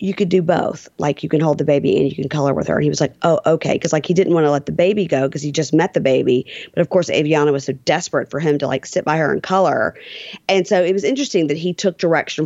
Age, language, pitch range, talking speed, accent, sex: 40-59, English, 140-175 Hz, 305 wpm, American, female